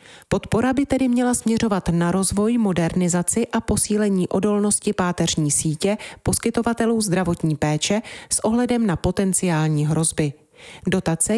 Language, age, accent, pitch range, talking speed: Czech, 30-49, native, 160-210 Hz, 115 wpm